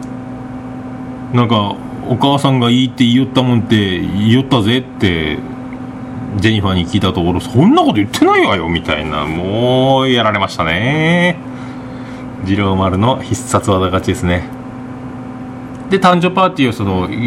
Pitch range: 110-135 Hz